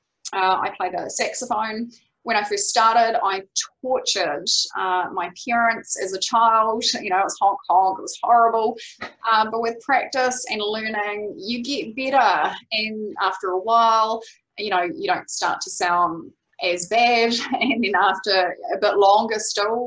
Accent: Australian